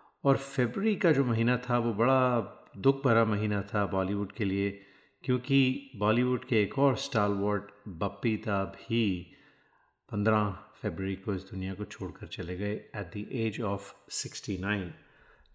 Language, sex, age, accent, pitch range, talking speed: Hindi, male, 30-49, native, 100-125 Hz, 145 wpm